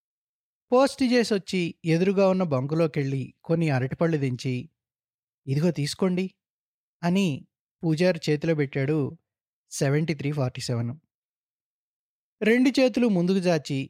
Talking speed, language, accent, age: 90 wpm, English, Indian, 20-39